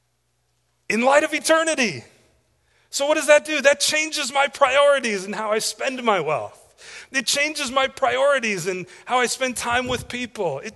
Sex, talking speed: male, 175 wpm